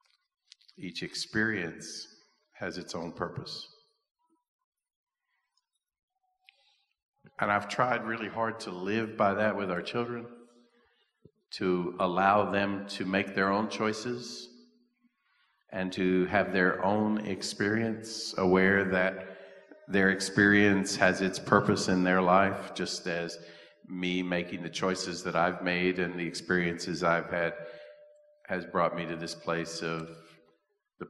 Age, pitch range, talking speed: 50-69, 90-115 Hz, 125 wpm